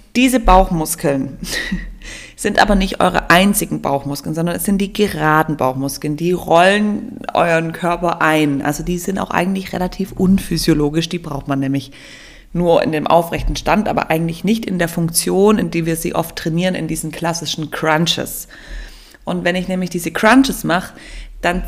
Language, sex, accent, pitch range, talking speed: German, female, German, 160-205 Hz, 165 wpm